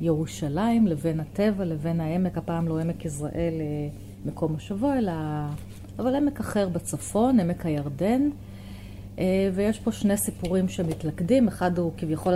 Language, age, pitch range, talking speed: Hebrew, 30-49, 150-195 Hz, 125 wpm